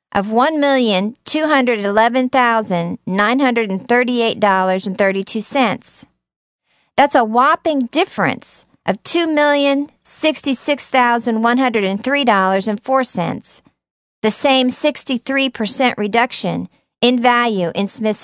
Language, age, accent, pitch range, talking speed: English, 50-69, American, 200-255 Hz, 55 wpm